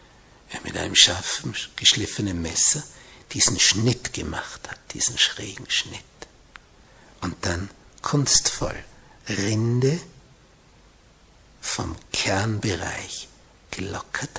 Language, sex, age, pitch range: German, male, 60-79, 110-135 Hz